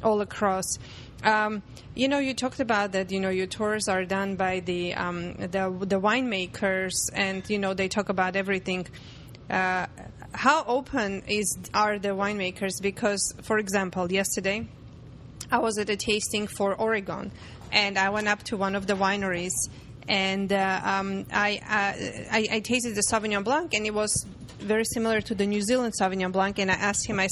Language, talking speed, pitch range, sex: English, 180 wpm, 195-230 Hz, female